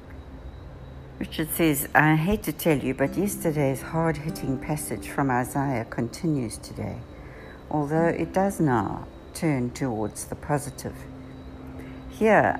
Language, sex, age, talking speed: English, female, 60-79, 115 wpm